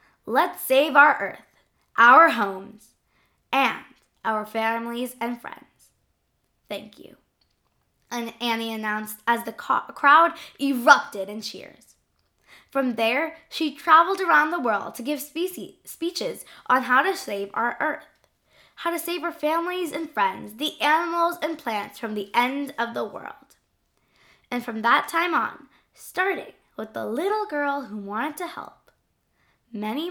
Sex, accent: female, American